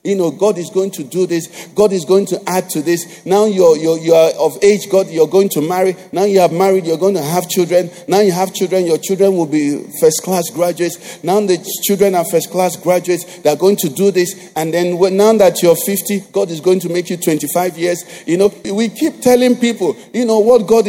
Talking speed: 235 wpm